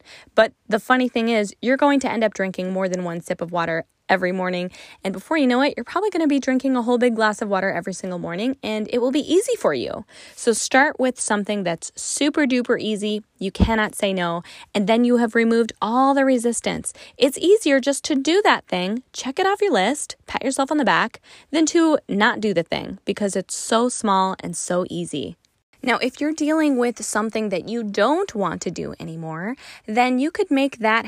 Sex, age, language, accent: female, 10-29, English, American